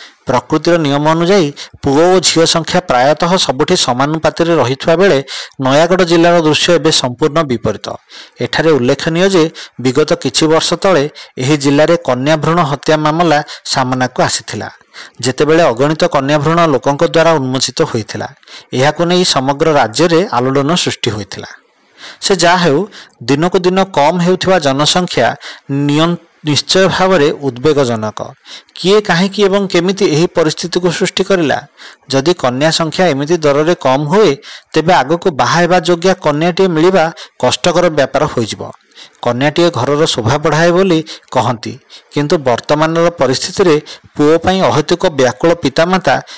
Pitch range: 140-175 Hz